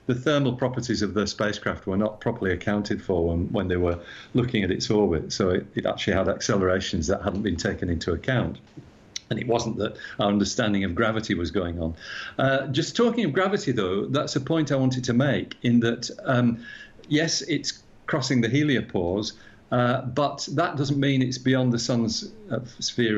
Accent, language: British, English